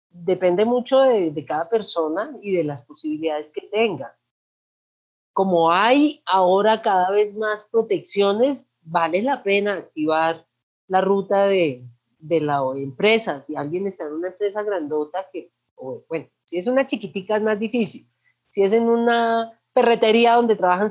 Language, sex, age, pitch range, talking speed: Spanish, female, 30-49, 170-230 Hz, 150 wpm